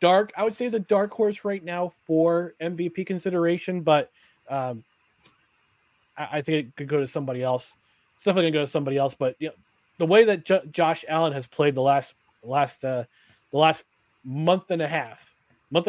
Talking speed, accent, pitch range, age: 200 wpm, American, 140-185 Hz, 30-49